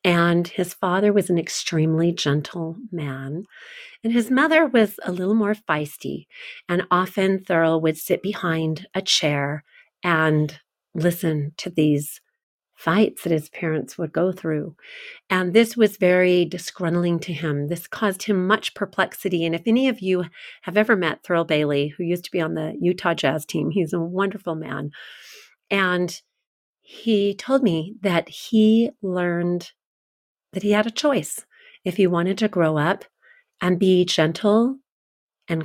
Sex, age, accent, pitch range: female, 40-59, American, 160-205 Hz